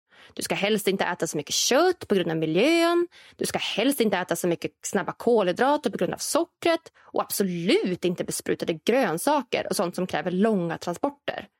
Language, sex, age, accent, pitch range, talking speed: English, female, 20-39, Swedish, 180-285 Hz, 185 wpm